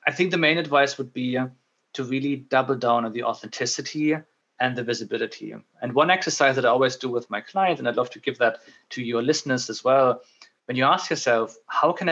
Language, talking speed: English, 220 wpm